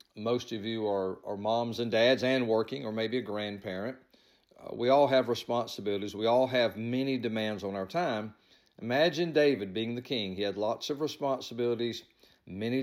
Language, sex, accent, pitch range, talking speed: English, male, American, 110-140 Hz, 180 wpm